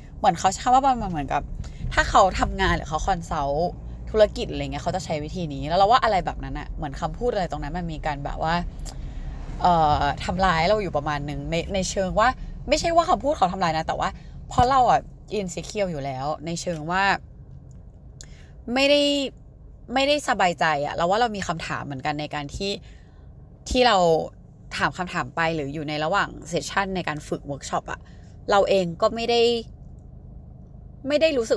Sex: female